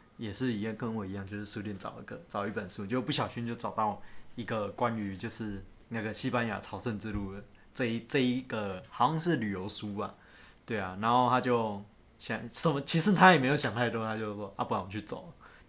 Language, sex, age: Chinese, male, 20-39